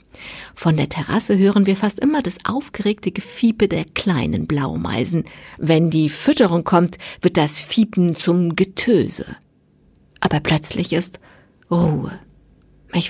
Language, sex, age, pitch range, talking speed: German, female, 50-69, 165-215 Hz, 125 wpm